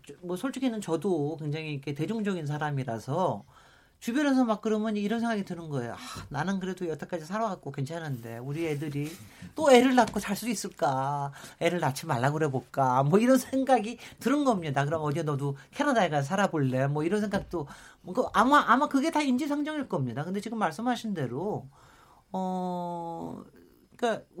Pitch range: 150-250 Hz